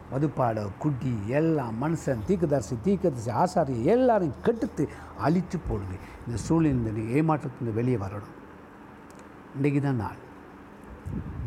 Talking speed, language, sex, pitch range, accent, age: 100 wpm, Tamil, male, 110-165 Hz, native, 60-79